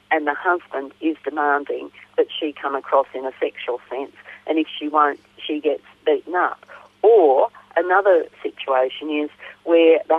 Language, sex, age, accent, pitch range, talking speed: English, female, 50-69, British, 145-170 Hz, 160 wpm